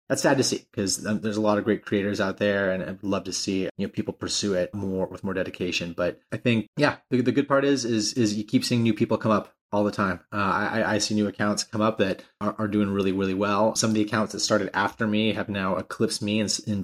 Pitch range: 100-110 Hz